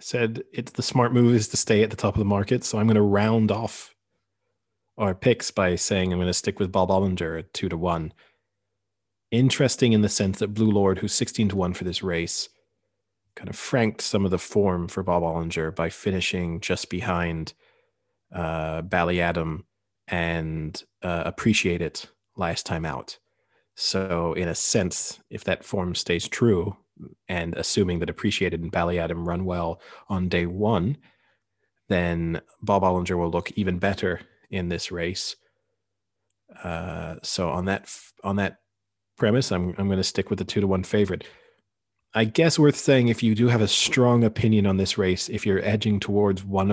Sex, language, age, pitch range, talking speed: male, English, 30-49, 90-105 Hz, 180 wpm